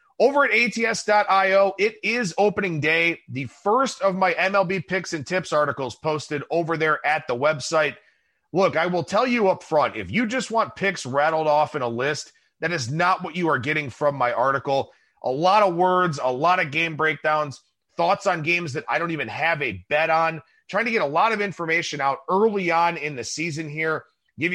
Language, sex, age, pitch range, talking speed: English, male, 30-49, 150-190 Hz, 205 wpm